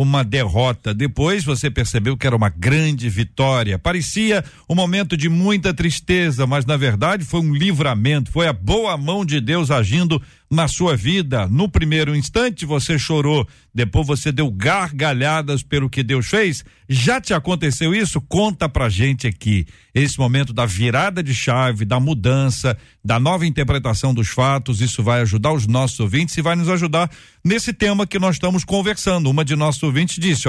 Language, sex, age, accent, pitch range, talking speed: Portuguese, male, 60-79, Brazilian, 125-170 Hz, 170 wpm